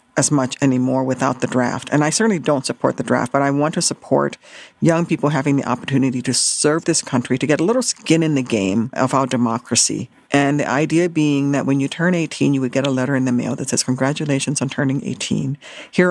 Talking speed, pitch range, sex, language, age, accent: 230 wpm, 135-200 Hz, female, English, 50-69, American